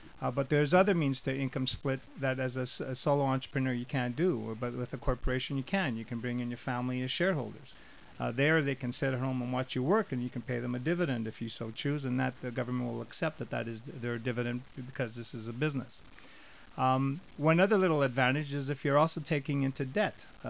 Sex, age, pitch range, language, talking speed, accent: male, 40-59, 125-150 Hz, English, 245 wpm, American